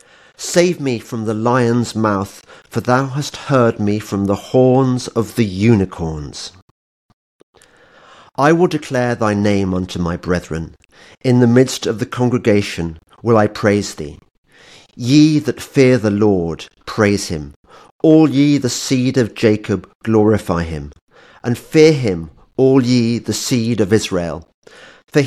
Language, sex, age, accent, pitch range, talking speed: English, male, 50-69, British, 95-125 Hz, 145 wpm